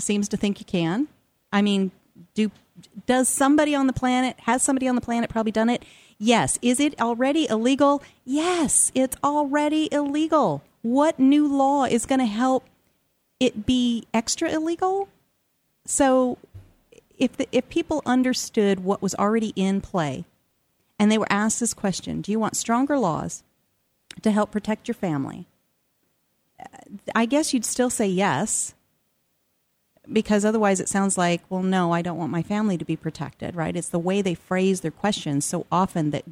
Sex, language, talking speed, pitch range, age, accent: female, English, 165 wpm, 180-255 Hz, 40-59, American